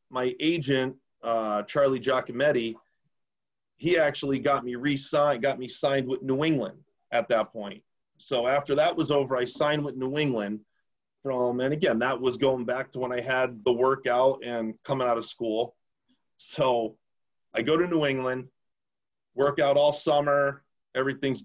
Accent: American